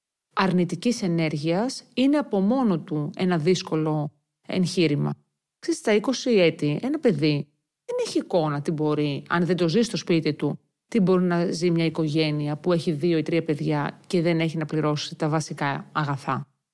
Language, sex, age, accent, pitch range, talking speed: Greek, female, 40-59, native, 160-230 Hz, 170 wpm